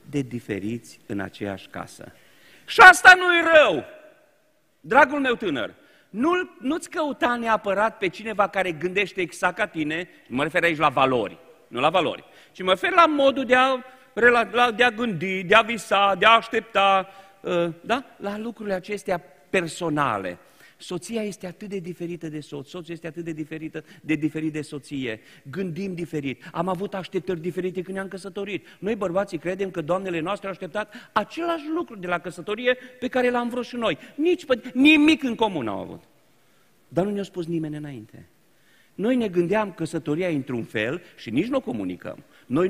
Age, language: 40-59, Romanian